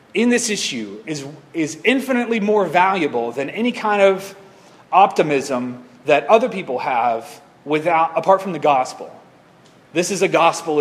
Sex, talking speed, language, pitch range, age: male, 145 wpm, English, 135-185 Hz, 30-49